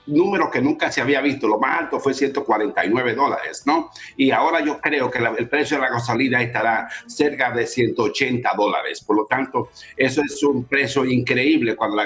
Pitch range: 120-140 Hz